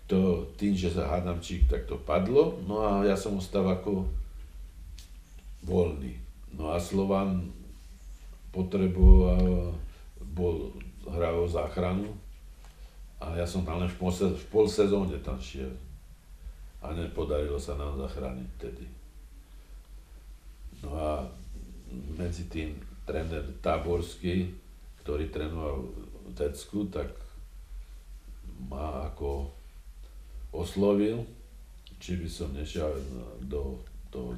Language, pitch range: Czech, 65-85 Hz